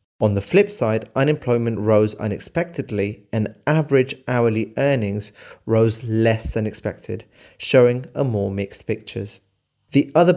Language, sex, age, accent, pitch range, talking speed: English, male, 30-49, British, 105-125 Hz, 125 wpm